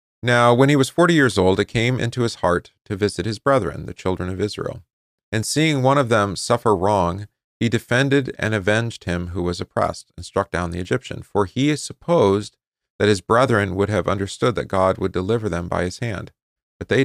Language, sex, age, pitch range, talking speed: English, male, 40-59, 90-115 Hz, 210 wpm